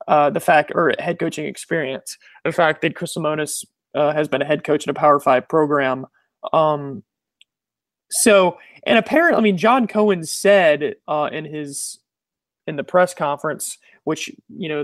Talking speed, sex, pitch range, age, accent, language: 170 wpm, male, 150-185 Hz, 30-49, American, English